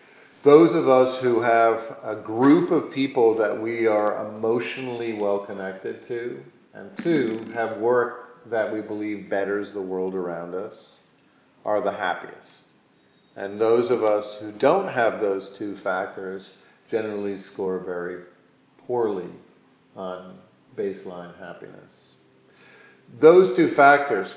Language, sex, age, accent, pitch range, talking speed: English, male, 50-69, American, 100-130 Hz, 125 wpm